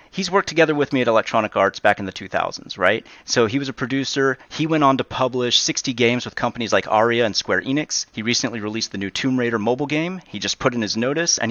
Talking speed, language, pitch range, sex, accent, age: 250 wpm, English, 110-145 Hz, male, American, 30-49